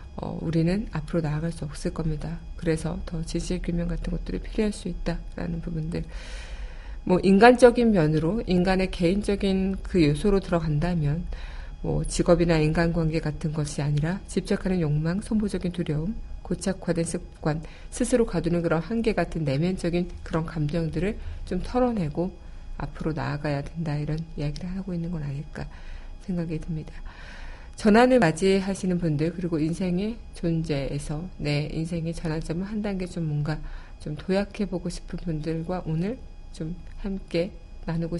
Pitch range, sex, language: 150-180 Hz, female, Korean